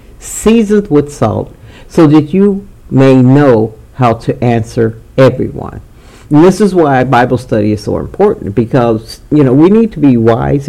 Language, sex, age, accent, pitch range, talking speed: English, male, 60-79, American, 115-145 Hz, 165 wpm